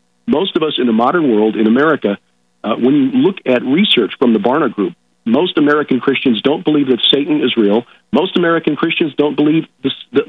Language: English